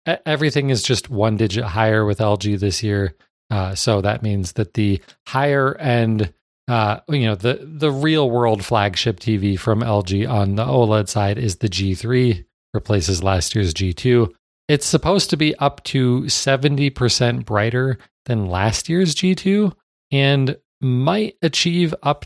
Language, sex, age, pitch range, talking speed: English, male, 40-59, 110-145 Hz, 150 wpm